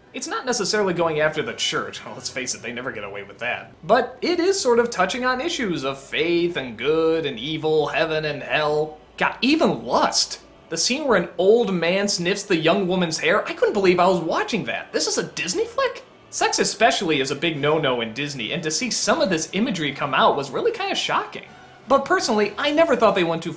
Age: 20-39